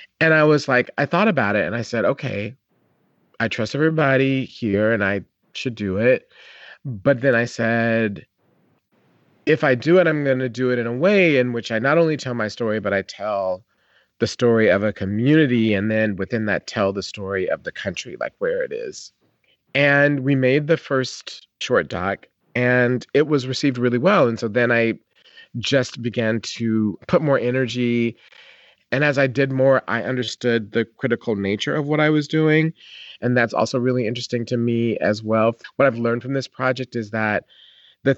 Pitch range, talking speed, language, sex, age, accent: 110-135 Hz, 190 wpm, English, male, 40-59, American